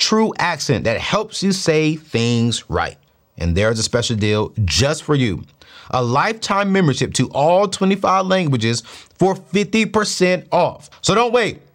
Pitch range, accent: 110-165 Hz, American